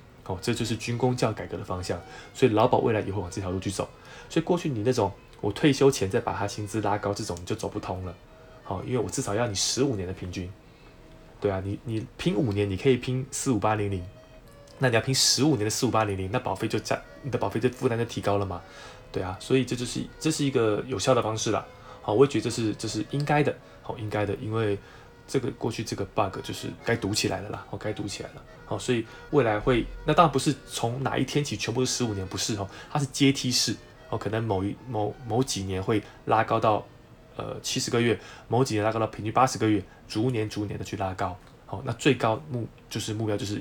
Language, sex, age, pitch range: Chinese, male, 20-39, 100-130 Hz